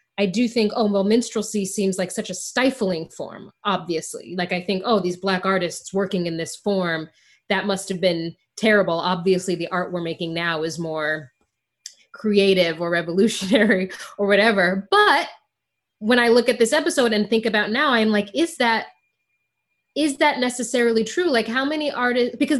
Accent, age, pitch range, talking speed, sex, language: American, 20-39, 190-240 Hz, 175 wpm, female, English